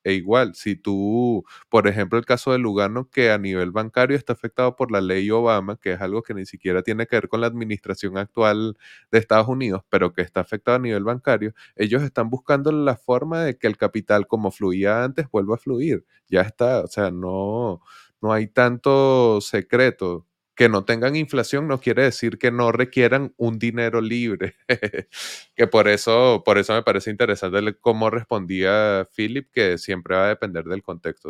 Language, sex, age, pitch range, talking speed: Spanish, male, 20-39, 95-115 Hz, 190 wpm